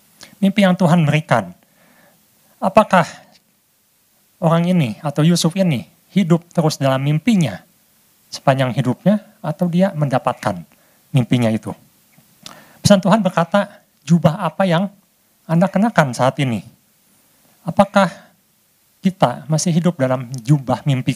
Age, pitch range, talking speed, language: 50-69, 135-190 Hz, 110 wpm, Indonesian